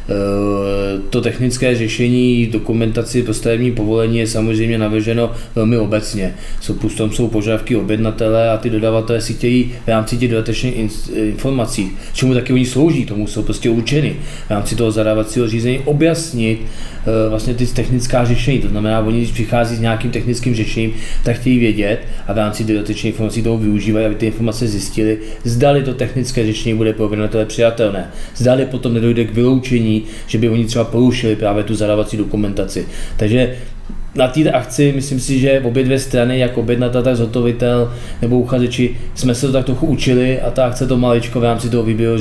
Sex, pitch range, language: male, 110-120 Hz, Czech